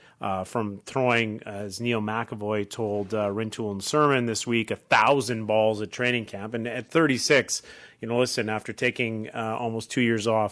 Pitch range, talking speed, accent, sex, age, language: 110-130 Hz, 190 wpm, American, male, 30-49, English